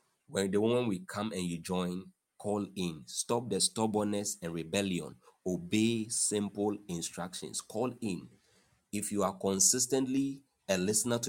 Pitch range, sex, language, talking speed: 95-125 Hz, male, English, 145 wpm